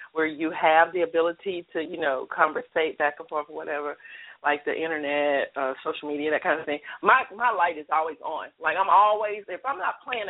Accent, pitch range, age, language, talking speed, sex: American, 170-210 Hz, 40-59, English, 215 wpm, female